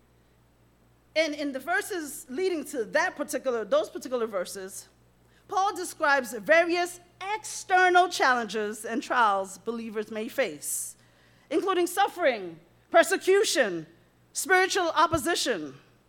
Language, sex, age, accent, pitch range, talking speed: English, female, 40-59, American, 255-370 Hz, 95 wpm